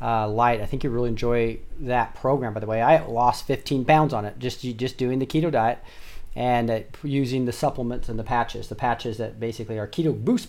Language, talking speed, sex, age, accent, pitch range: English, 225 wpm, male, 40-59, American, 115-140 Hz